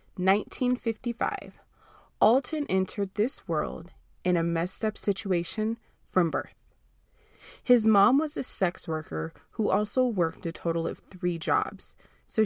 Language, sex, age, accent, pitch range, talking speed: English, female, 20-39, American, 170-230 Hz, 130 wpm